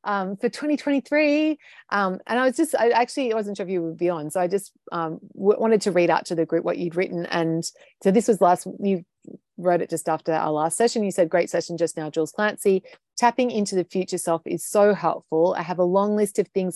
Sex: female